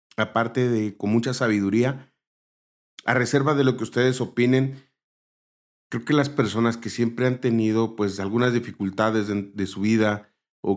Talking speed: 155 wpm